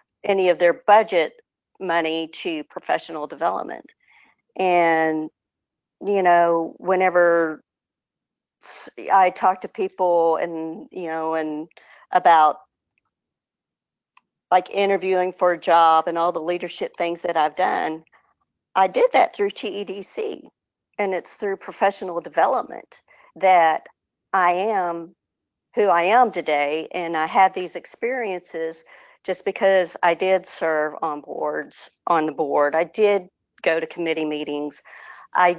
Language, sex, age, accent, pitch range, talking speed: English, female, 50-69, American, 160-195 Hz, 125 wpm